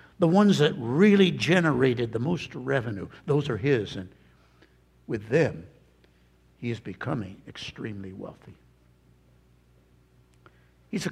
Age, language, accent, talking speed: 60-79, English, American, 115 wpm